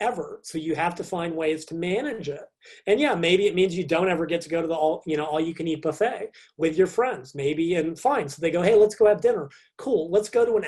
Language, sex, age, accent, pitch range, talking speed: English, male, 30-49, American, 155-190 Hz, 280 wpm